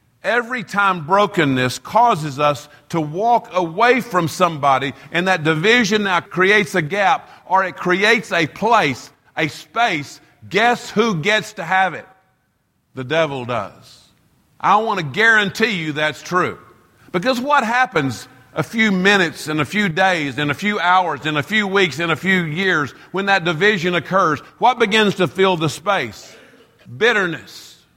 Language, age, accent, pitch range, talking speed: English, 50-69, American, 160-220 Hz, 155 wpm